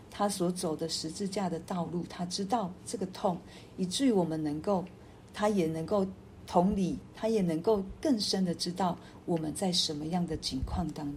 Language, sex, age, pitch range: Chinese, female, 50-69, 165-200 Hz